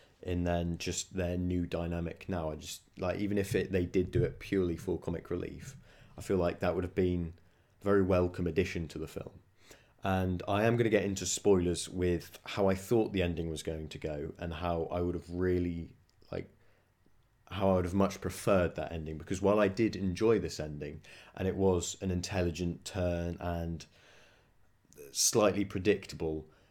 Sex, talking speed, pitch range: male, 190 wpm, 85-100 Hz